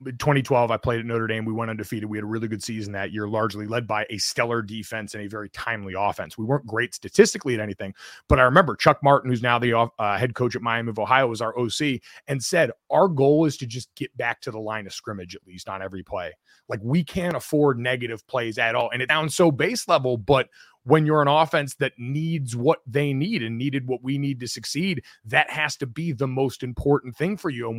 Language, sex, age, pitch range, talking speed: English, male, 30-49, 115-145 Hz, 245 wpm